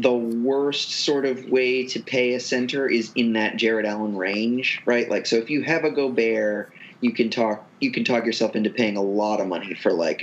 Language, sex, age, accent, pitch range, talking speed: English, male, 30-49, American, 115-145 Hz, 230 wpm